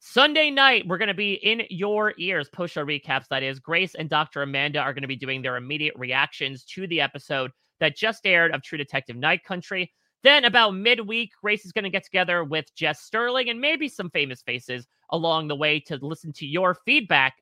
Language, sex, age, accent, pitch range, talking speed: English, male, 30-49, American, 140-210 Hz, 215 wpm